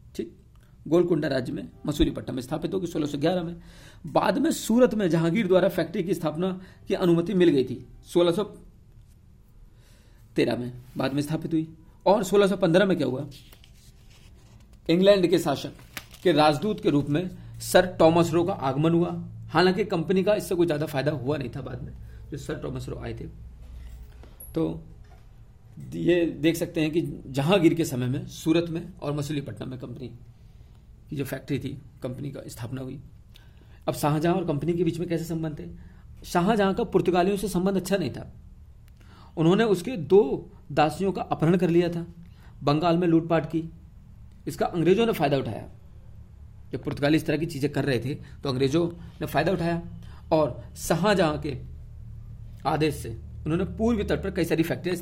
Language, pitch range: Hindi, 120-170 Hz